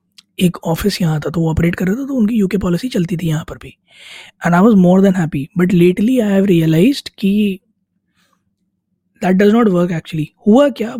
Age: 20-39